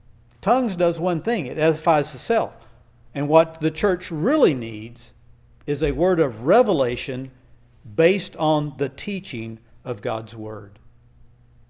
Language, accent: English, American